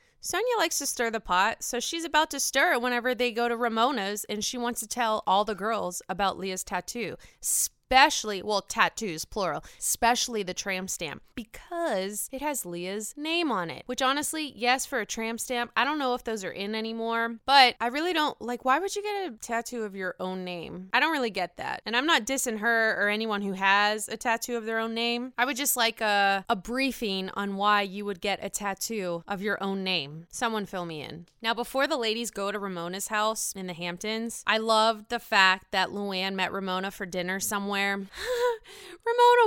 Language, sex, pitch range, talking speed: English, female, 200-260 Hz, 210 wpm